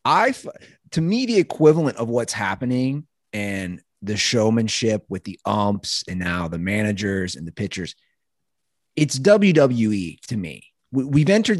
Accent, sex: American, male